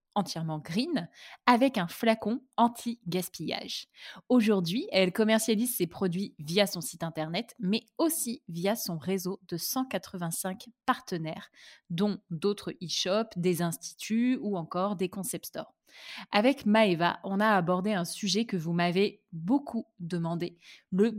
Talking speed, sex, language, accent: 130 wpm, female, French, French